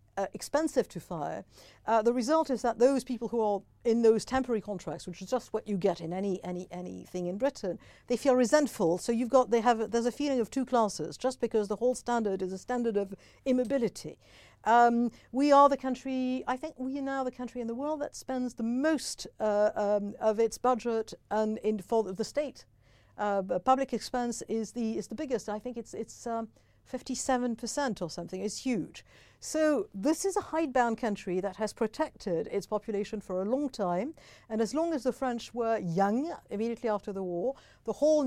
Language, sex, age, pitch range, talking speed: English, female, 60-79, 200-255 Hz, 205 wpm